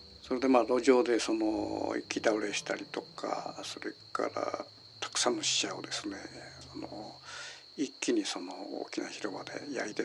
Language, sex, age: Japanese, male, 60-79